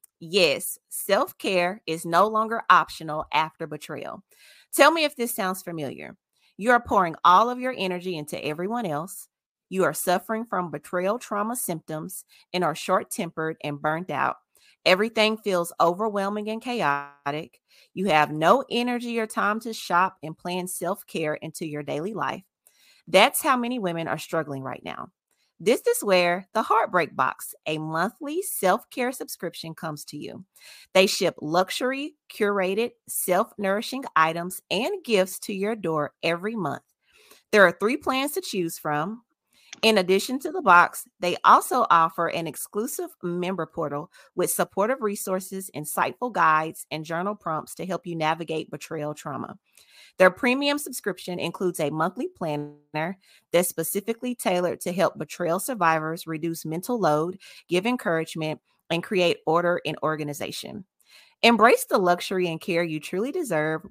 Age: 30-49